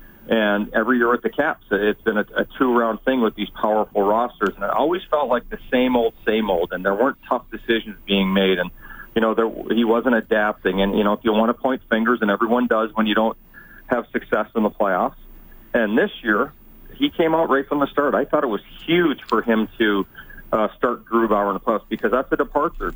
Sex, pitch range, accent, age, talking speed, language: male, 110-130 Hz, American, 40-59, 230 wpm, English